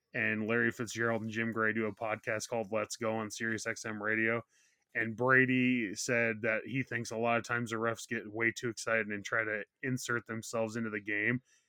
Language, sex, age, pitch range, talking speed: English, male, 20-39, 110-130 Hz, 200 wpm